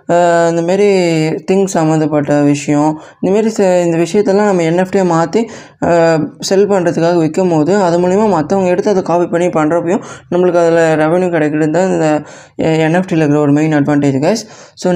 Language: Tamil